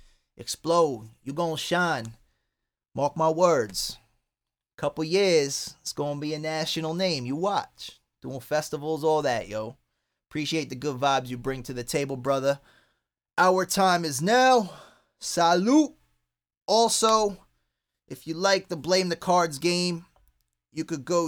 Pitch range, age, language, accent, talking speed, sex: 150-190 Hz, 20-39, English, American, 140 wpm, male